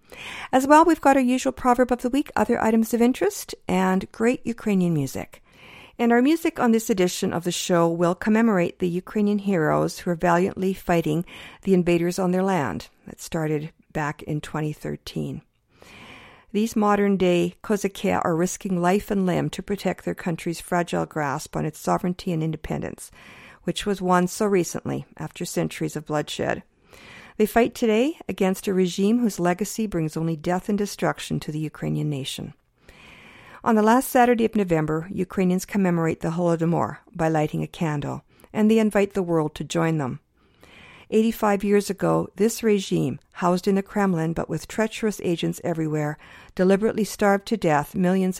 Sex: female